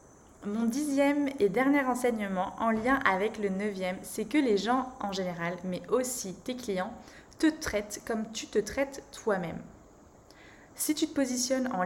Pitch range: 195-245 Hz